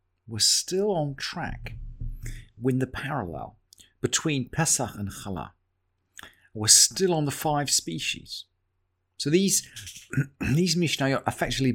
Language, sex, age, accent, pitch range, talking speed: English, male, 50-69, British, 95-135 Hz, 110 wpm